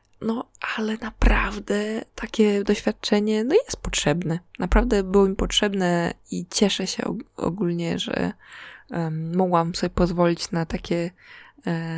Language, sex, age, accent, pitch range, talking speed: Polish, female, 20-39, native, 150-215 Hz, 125 wpm